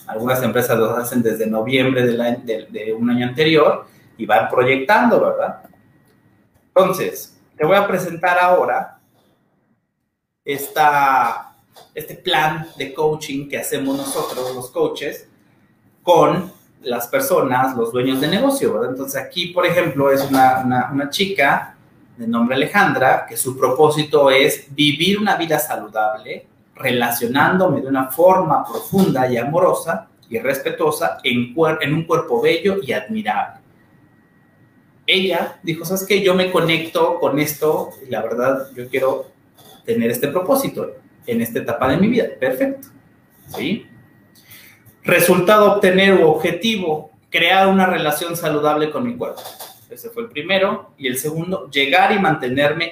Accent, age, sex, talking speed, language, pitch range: Mexican, 30-49, male, 140 wpm, Spanish, 130-185 Hz